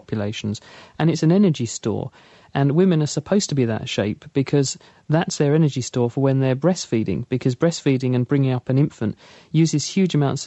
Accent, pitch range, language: British, 125-150 Hz, English